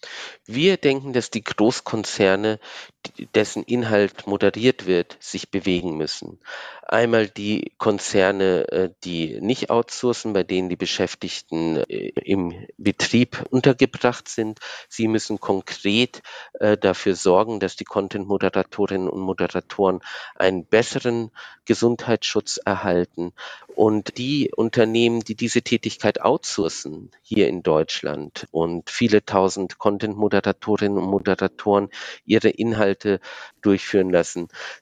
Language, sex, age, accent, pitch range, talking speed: German, male, 50-69, German, 95-120 Hz, 105 wpm